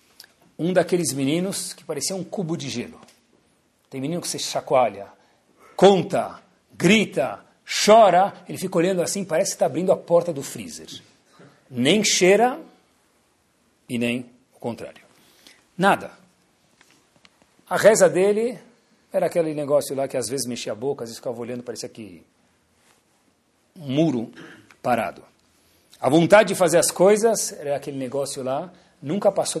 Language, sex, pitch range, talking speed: Portuguese, male, 145-210 Hz, 140 wpm